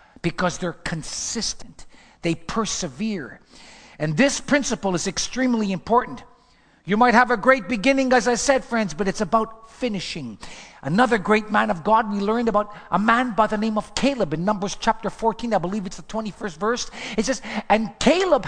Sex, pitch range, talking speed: male, 190-240 Hz, 175 wpm